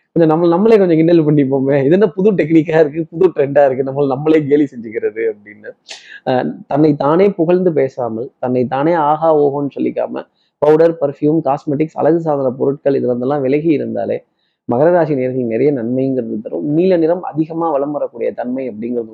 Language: Tamil